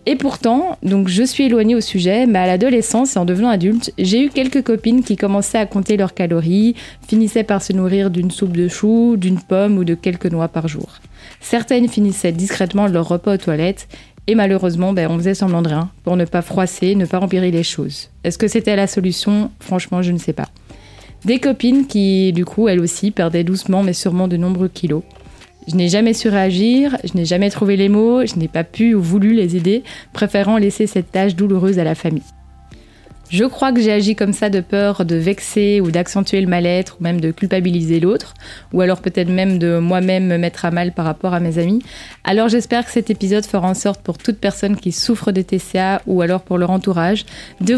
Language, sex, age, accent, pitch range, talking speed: French, female, 20-39, French, 175-215 Hz, 215 wpm